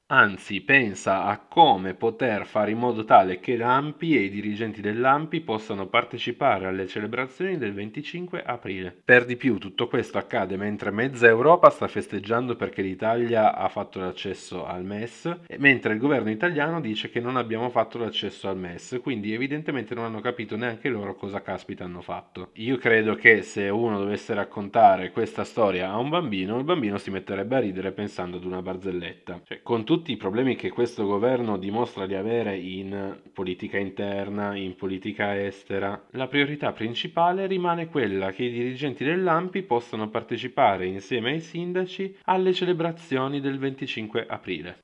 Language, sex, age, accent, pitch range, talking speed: Italian, male, 30-49, native, 100-125 Hz, 160 wpm